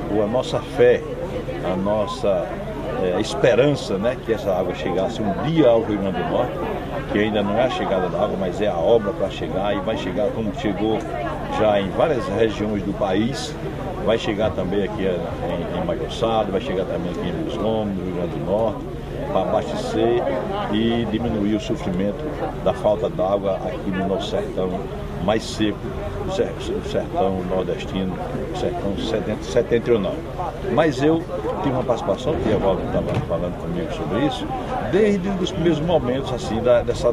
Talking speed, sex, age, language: 160 wpm, male, 60-79, Portuguese